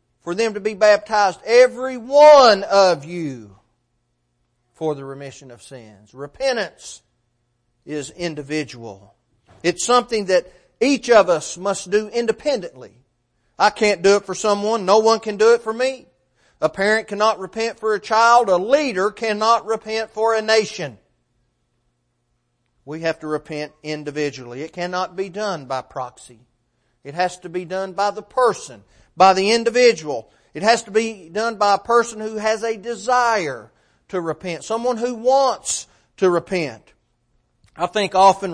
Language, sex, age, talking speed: English, male, 40-59, 150 wpm